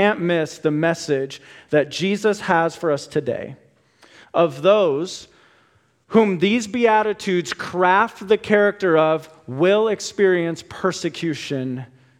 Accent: American